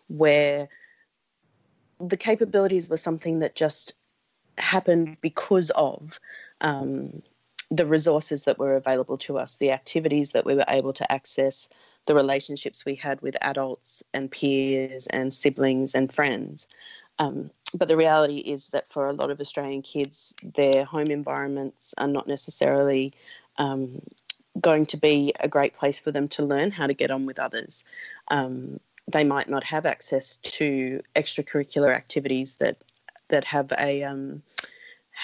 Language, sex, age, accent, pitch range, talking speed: English, female, 30-49, Australian, 135-155 Hz, 150 wpm